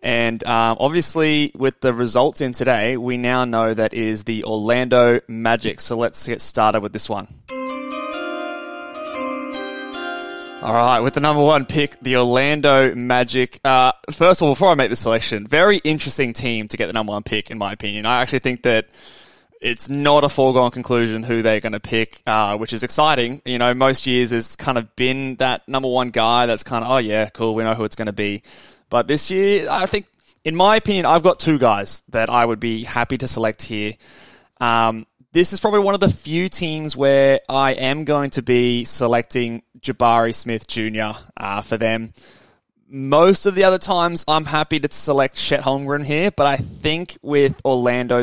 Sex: male